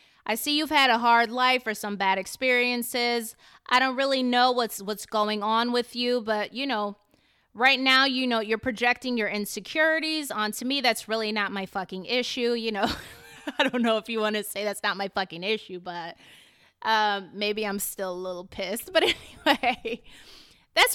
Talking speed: 190 wpm